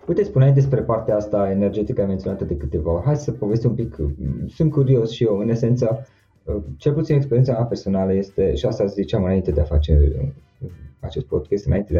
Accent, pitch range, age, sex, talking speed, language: native, 90-115 Hz, 20-39, male, 190 wpm, Romanian